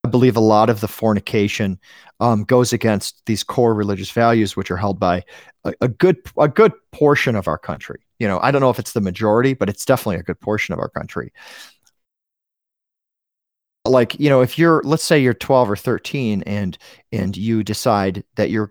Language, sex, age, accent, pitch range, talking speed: English, male, 40-59, American, 100-125 Hz, 200 wpm